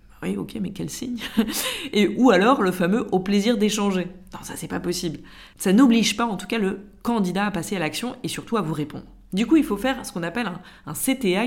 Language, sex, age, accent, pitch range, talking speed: French, female, 20-39, French, 175-230 Hz, 240 wpm